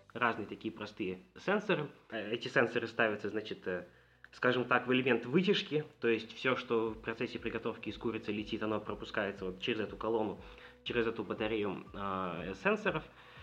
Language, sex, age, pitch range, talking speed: Russian, male, 20-39, 105-130 Hz, 150 wpm